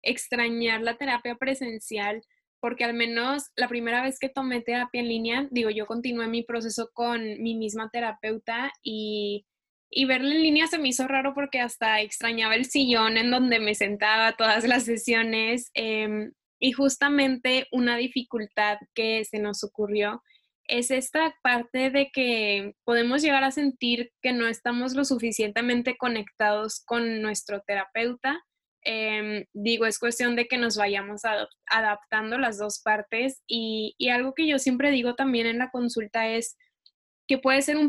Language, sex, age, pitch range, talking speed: Spanish, female, 10-29, 220-255 Hz, 160 wpm